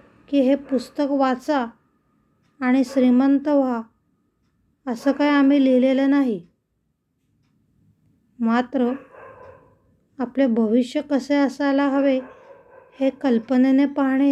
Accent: native